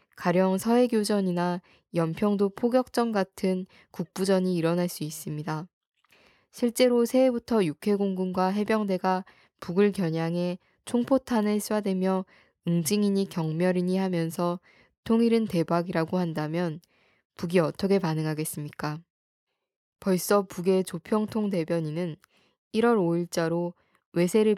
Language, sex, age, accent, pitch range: Korean, female, 20-39, native, 170-200 Hz